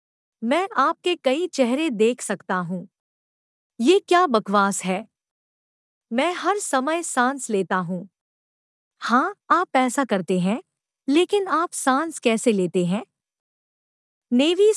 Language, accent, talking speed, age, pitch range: Hindi, native, 120 wpm, 50-69, 225-310 Hz